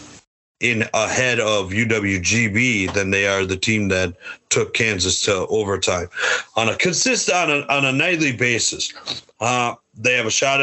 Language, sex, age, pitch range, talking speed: English, male, 40-59, 105-135 Hz, 160 wpm